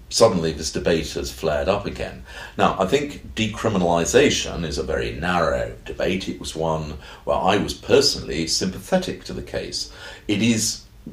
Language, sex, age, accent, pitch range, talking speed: English, male, 50-69, British, 75-95 Hz, 155 wpm